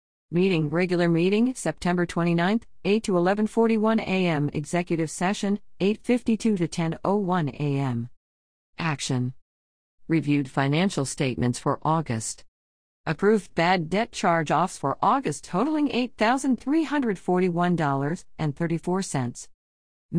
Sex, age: female, 50-69